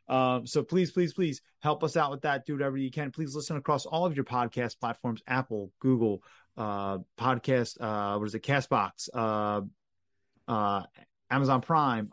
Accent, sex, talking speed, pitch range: American, male, 180 wpm, 115-145 Hz